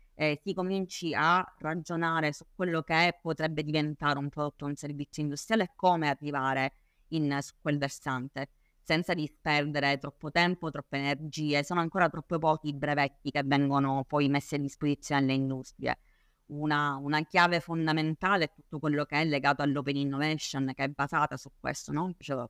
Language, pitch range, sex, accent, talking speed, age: Italian, 140-160 Hz, female, native, 165 wpm, 30-49